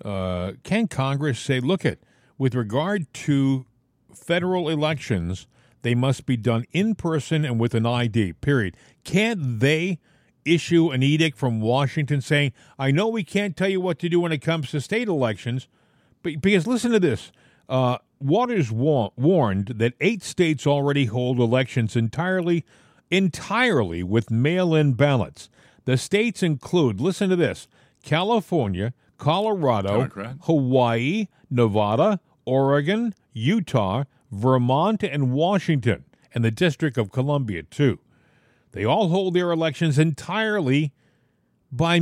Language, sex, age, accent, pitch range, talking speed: English, male, 50-69, American, 125-175 Hz, 135 wpm